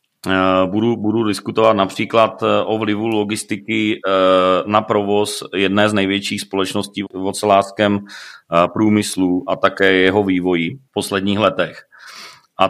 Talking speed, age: 115 wpm, 30-49